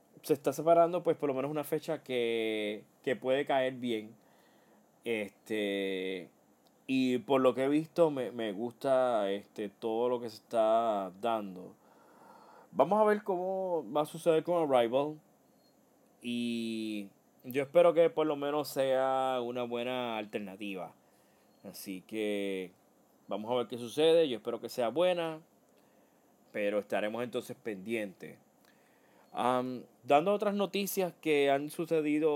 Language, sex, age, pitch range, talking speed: Spanish, male, 20-39, 110-145 Hz, 135 wpm